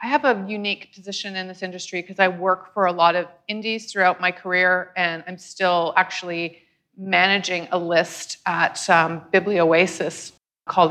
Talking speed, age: 165 wpm, 30-49